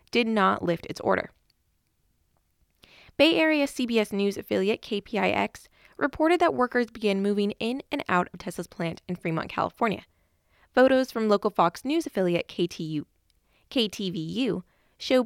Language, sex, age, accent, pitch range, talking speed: English, female, 20-39, American, 185-245 Hz, 130 wpm